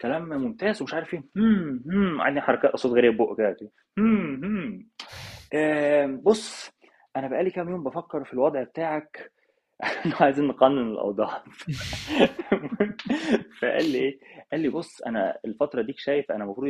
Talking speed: 135 wpm